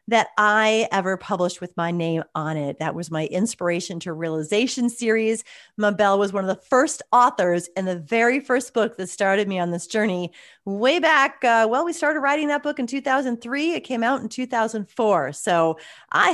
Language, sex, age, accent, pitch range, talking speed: English, female, 30-49, American, 185-255 Hz, 190 wpm